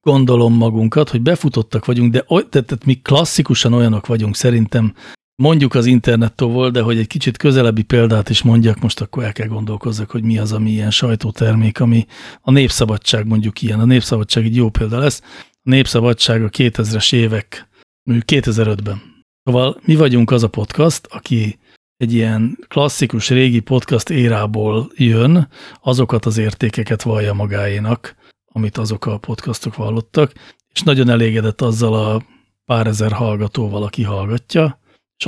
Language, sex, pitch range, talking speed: Hungarian, male, 110-130 Hz, 150 wpm